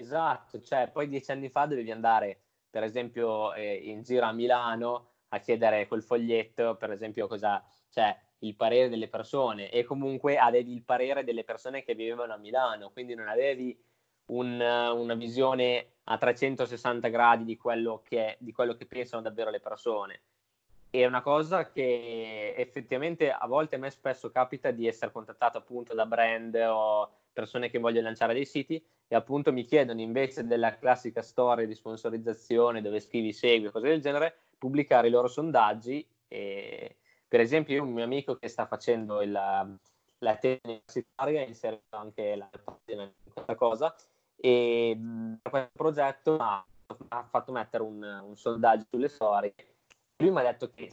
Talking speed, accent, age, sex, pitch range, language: 165 wpm, native, 20-39, male, 115-130 Hz, Italian